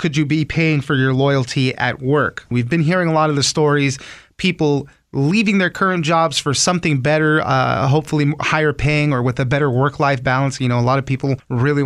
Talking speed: 215 wpm